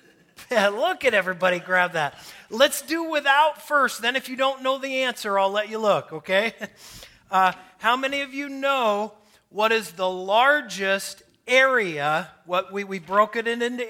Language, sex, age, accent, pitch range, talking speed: English, male, 40-59, American, 180-260 Hz, 170 wpm